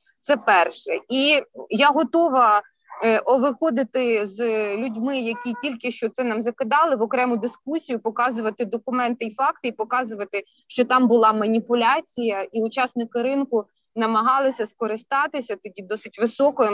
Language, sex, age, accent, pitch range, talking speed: Ukrainian, female, 20-39, native, 230-295 Hz, 135 wpm